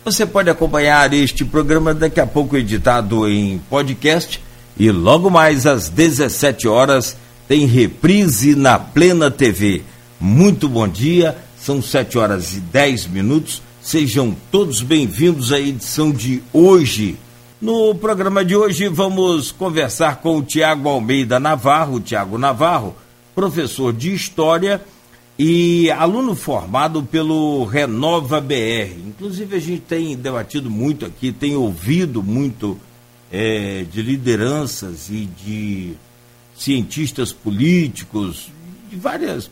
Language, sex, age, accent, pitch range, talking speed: Portuguese, male, 60-79, Brazilian, 120-160 Hz, 120 wpm